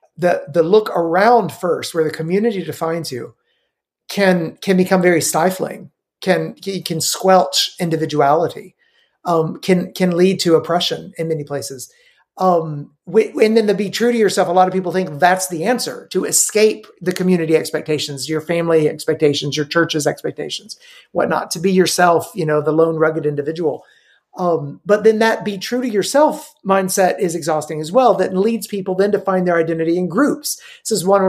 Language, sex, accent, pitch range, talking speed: English, male, American, 160-190 Hz, 180 wpm